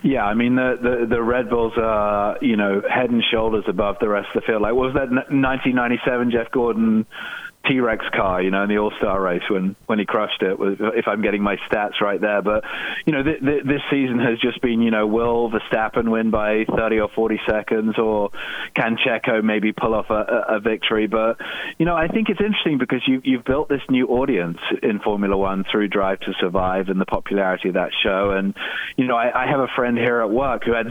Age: 30-49